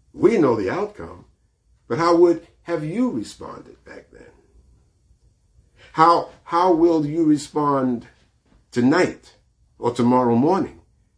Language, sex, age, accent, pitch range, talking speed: English, male, 50-69, American, 120-150 Hz, 115 wpm